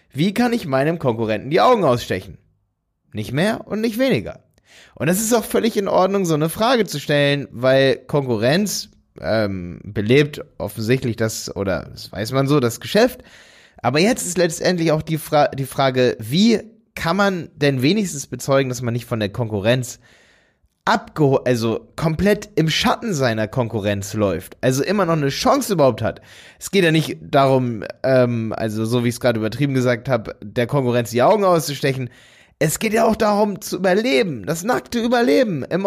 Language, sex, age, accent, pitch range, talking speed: German, male, 20-39, German, 120-180 Hz, 175 wpm